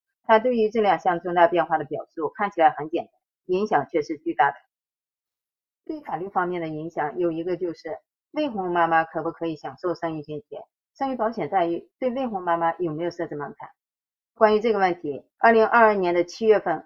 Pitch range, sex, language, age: 165-230 Hz, female, Chinese, 20-39